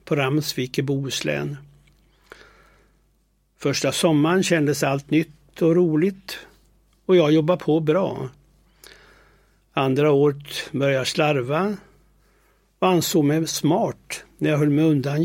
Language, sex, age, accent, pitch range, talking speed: Swedish, male, 60-79, native, 140-175 Hz, 110 wpm